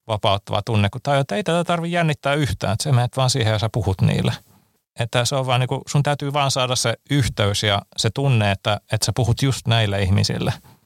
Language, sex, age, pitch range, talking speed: Finnish, male, 30-49, 105-130 Hz, 225 wpm